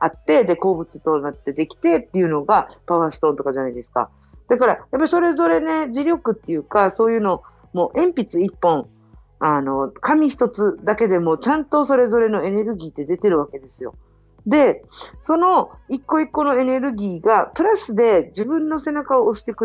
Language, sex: Japanese, female